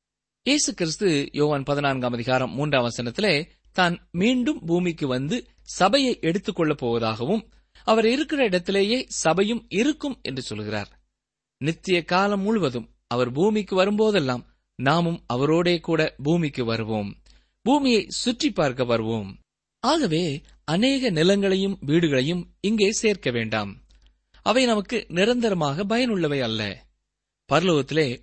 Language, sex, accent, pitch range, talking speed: Tamil, male, native, 130-210 Hz, 100 wpm